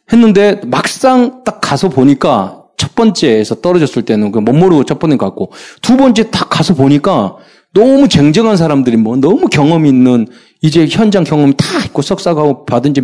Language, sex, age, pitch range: Korean, male, 40-59, 145-200 Hz